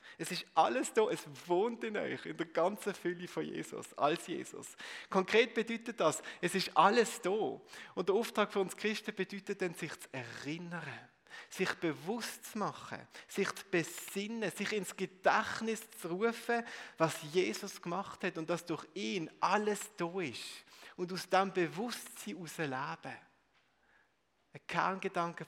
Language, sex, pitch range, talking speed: German, male, 150-200 Hz, 150 wpm